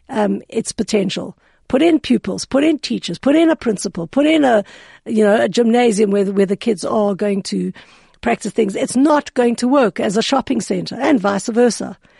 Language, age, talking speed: English, 60-79, 200 wpm